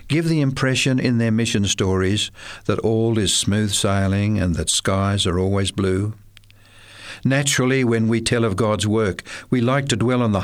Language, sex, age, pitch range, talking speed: English, male, 60-79, 100-120 Hz, 180 wpm